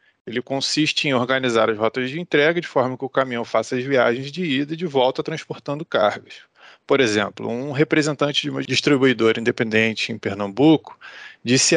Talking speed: 175 wpm